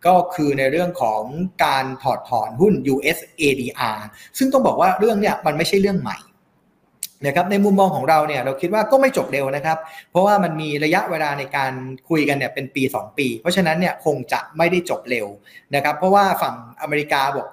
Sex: male